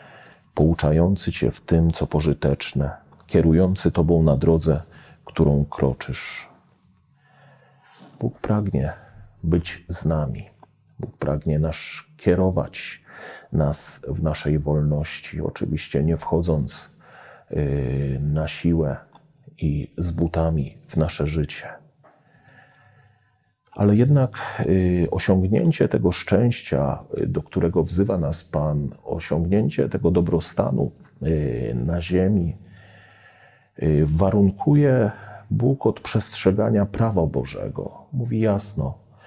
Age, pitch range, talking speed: 40-59, 75-100 Hz, 90 wpm